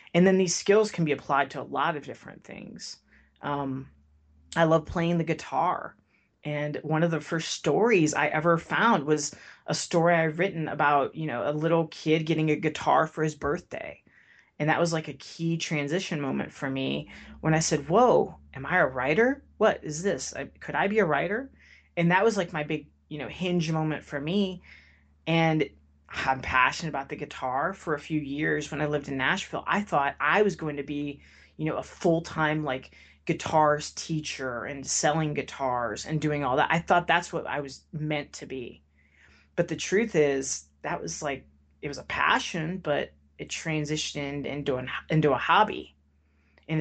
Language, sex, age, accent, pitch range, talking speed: English, female, 30-49, American, 135-165 Hz, 190 wpm